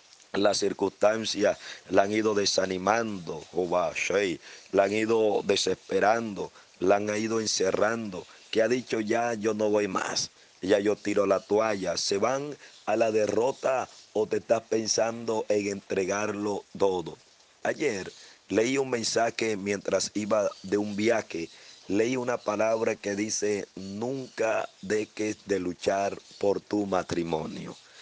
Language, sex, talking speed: Spanish, male, 135 wpm